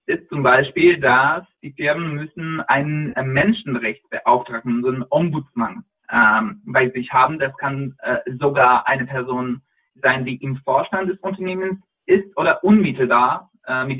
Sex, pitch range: male, 130-175 Hz